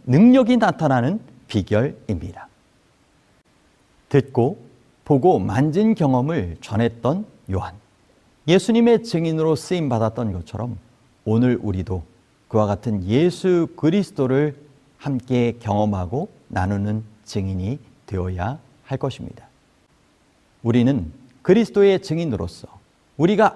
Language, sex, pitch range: Korean, male, 110-185 Hz